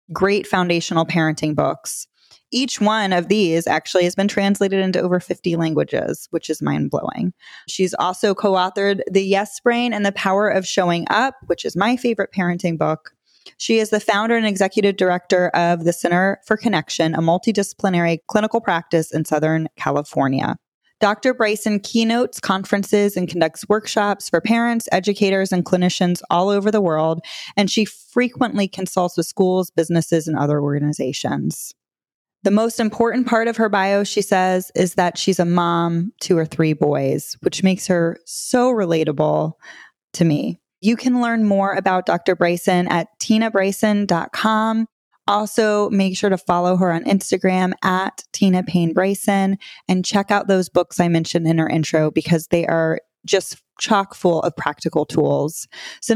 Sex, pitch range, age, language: female, 170-215 Hz, 20-39, English